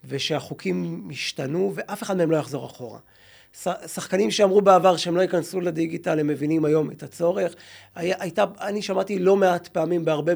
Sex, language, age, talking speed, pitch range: male, Hebrew, 30-49, 170 wpm, 145-185 Hz